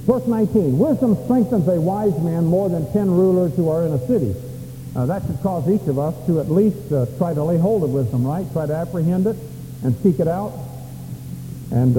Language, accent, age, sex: English, American, 50-69, male